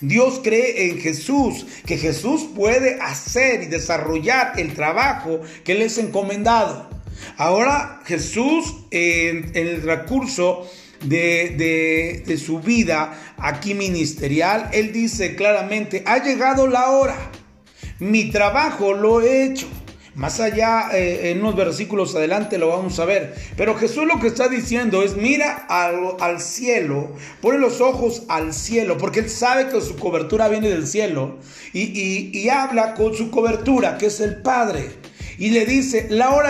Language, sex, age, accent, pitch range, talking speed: Spanish, male, 40-59, Mexican, 170-245 Hz, 155 wpm